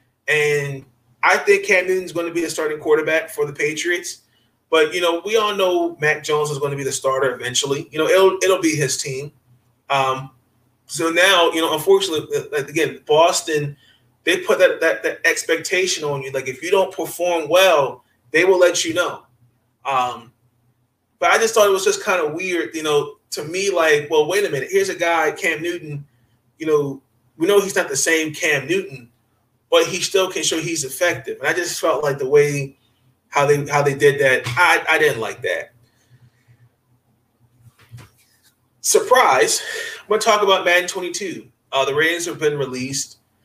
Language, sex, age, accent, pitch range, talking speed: English, male, 30-49, American, 125-175 Hz, 190 wpm